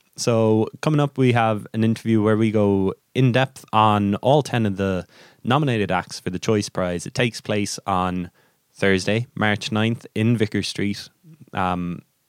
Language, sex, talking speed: English, male, 165 wpm